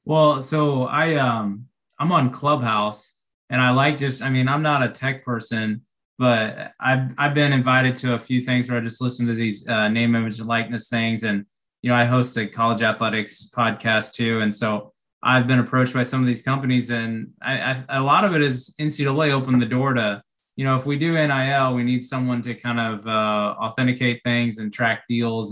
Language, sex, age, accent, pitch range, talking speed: English, male, 20-39, American, 115-130 Hz, 210 wpm